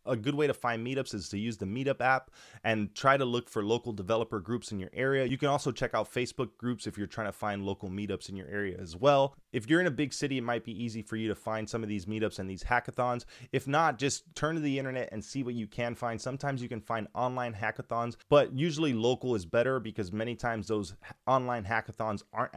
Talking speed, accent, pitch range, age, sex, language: 250 wpm, American, 110-130 Hz, 20-39, male, English